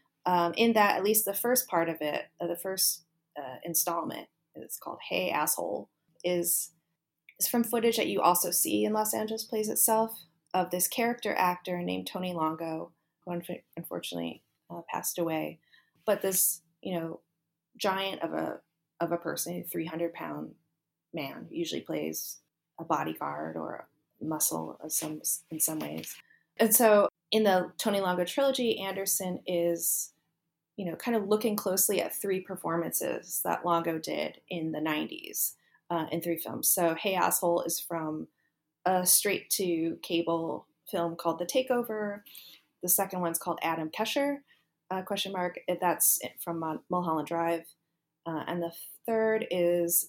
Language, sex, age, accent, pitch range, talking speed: English, female, 20-39, American, 160-195 Hz, 150 wpm